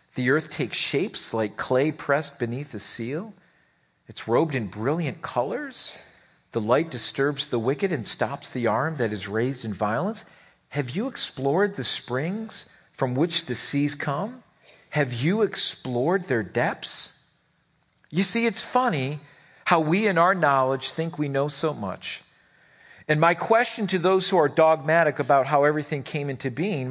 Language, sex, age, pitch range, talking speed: English, male, 50-69, 135-180 Hz, 160 wpm